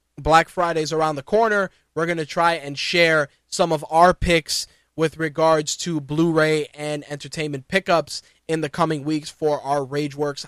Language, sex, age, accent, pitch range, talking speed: English, male, 20-39, American, 145-170 Hz, 165 wpm